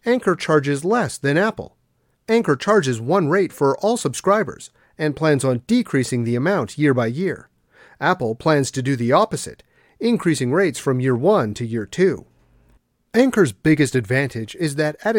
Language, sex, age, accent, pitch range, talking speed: English, male, 40-59, American, 130-195 Hz, 160 wpm